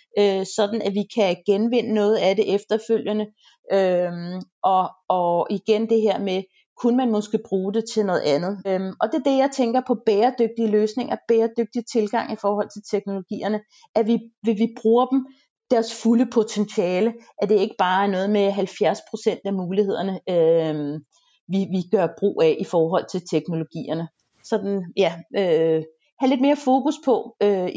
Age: 30-49